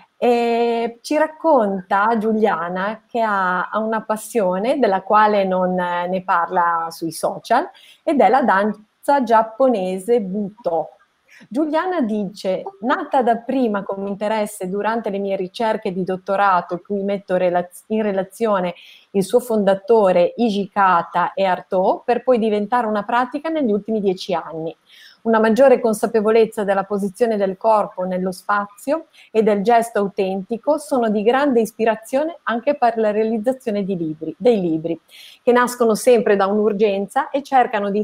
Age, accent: 30-49, native